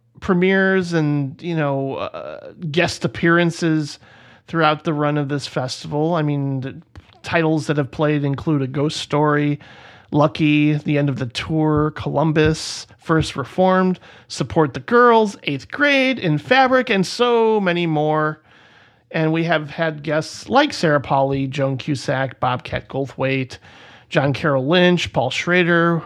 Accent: American